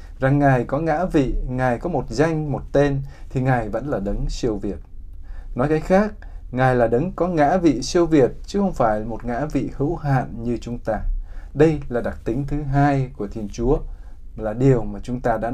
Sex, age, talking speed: male, 20-39, 210 wpm